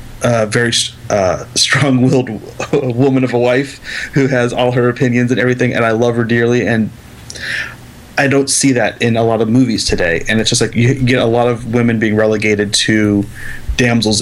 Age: 30-49